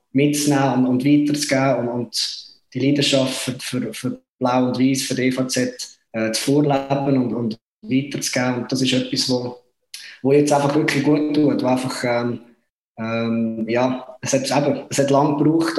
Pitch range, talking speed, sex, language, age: 120-140 Hz, 175 wpm, male, German, 20-39